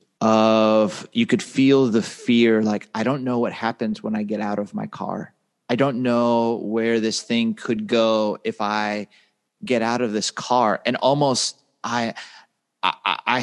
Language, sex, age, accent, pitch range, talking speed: English, male, 30-49, American, 110-130 Hz, 170 wpm